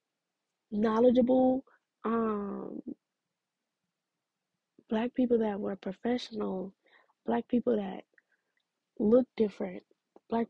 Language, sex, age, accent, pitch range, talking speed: English, female, 20-39, American, 205-235 Hz, 75 wpm